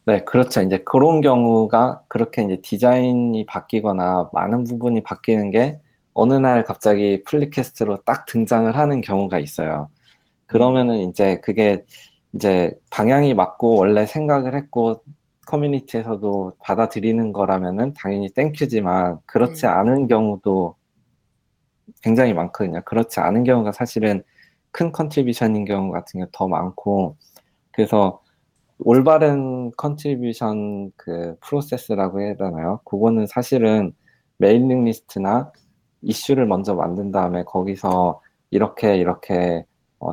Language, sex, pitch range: Korean, male, 95-125 Hz